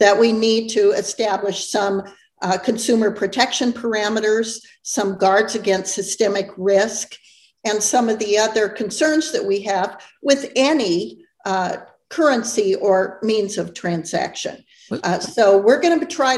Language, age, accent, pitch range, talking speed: English, 50-69, American, 195-250 Hz, 140 wpm